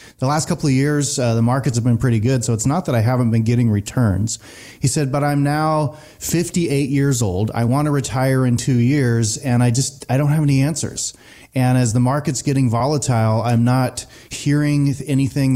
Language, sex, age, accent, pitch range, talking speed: English, male, 30-49, American, 120-145 Hz, 210 wpm